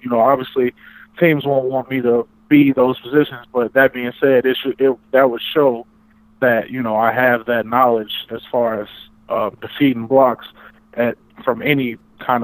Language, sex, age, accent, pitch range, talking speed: English, male, 20-39, American, 115-130 Hz, 180 wpm